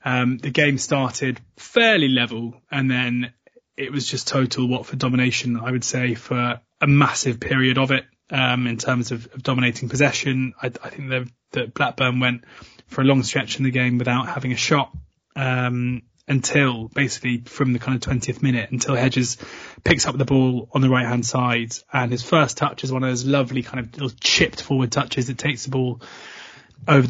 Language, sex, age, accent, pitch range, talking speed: English, male, 20-39, British, 125-140 Hz, 195 wpm